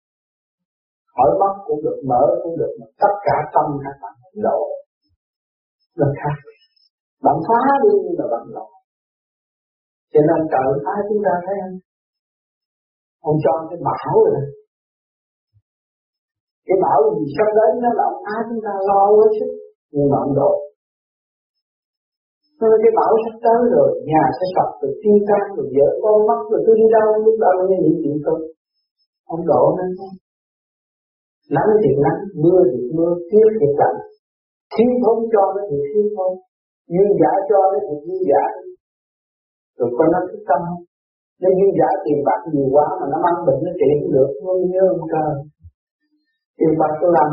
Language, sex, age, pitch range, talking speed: Vietnamese, male, 50-69, 150-225 Hz, 170 wpm